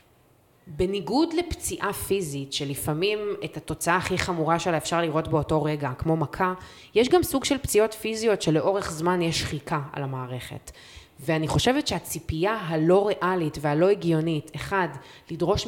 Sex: female